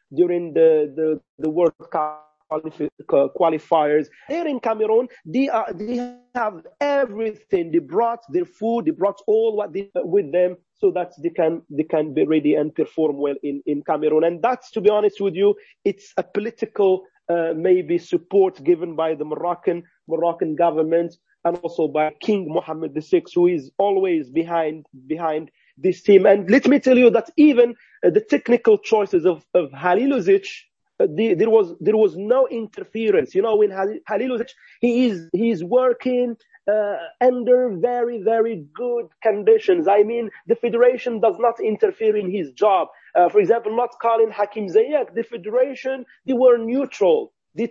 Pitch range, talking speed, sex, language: 170-250 Hz, 165 wpm, male, English